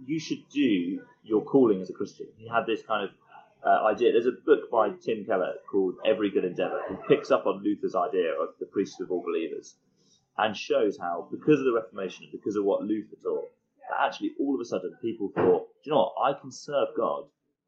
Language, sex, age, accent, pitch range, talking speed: English, male, 30-49, British, 305-455 Hz, 220 wpm